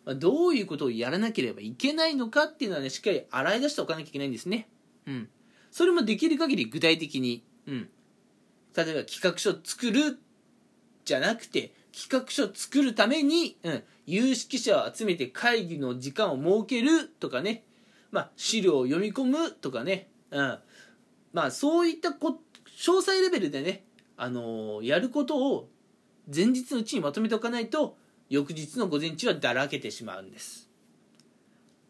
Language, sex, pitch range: Japanese, male, 180-295 Hz